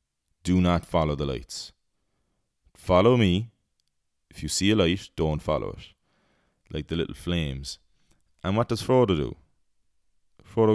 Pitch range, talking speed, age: 70-105 Hz, 140 wpm, 20-39